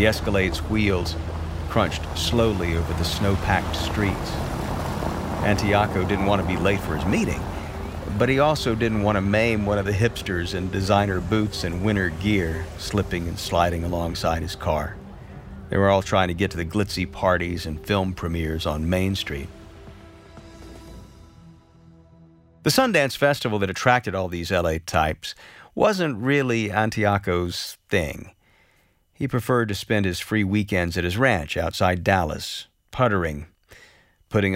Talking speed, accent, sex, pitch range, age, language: 145 wpm, American, male, 85-105 Hz, 50-69, English